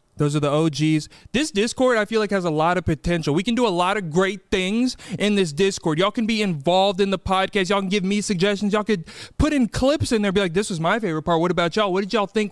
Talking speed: 285 wpm